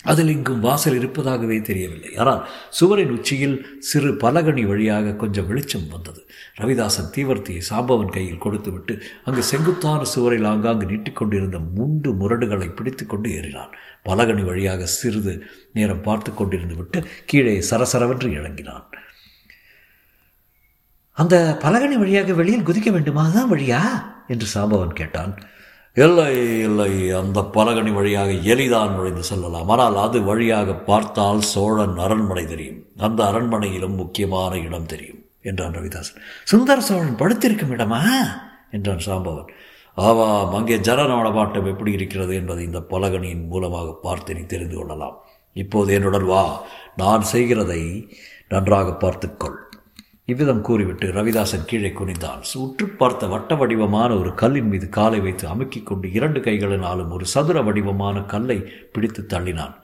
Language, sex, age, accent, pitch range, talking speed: Tamil, male, 50-69, native, 95-125 Hz, 120 wpm